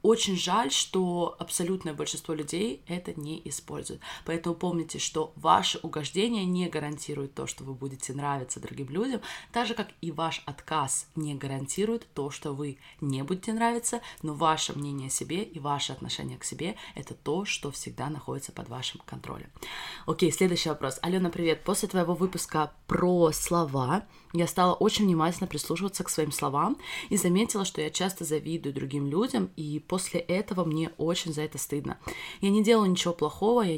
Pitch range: 150-190 Hz